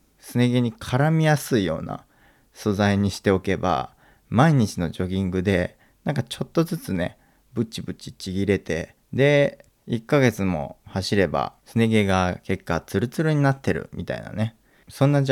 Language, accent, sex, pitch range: Japanese, native, male, 95-125 Hz